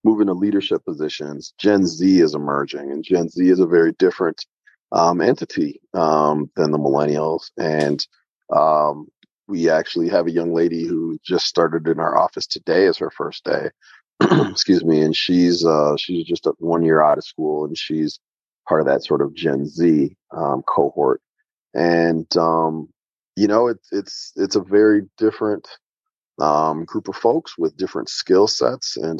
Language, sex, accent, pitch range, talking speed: English, male, American, 80-110 Hz, 170 wpm